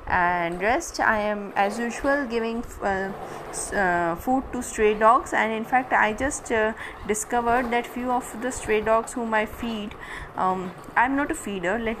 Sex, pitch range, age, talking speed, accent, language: female, 200-240 Hz, 20-39, 180 wpm, native, Hindi